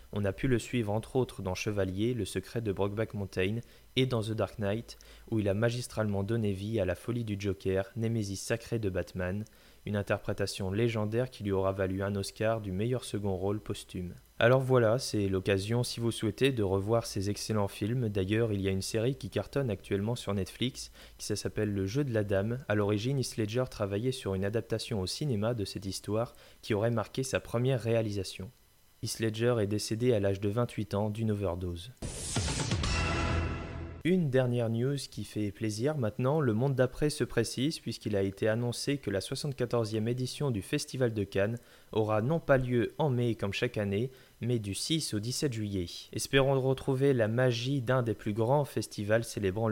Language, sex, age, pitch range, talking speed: French, male, 20-39, 100-120 Hz, 190 wpm